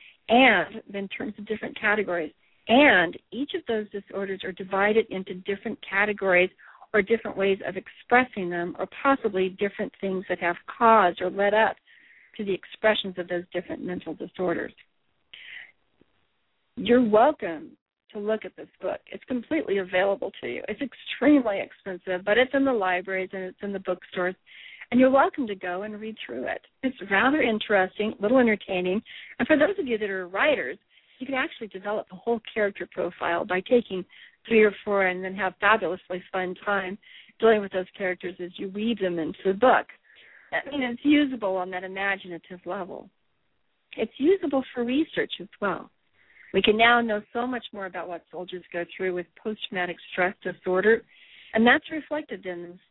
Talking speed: 175 wpm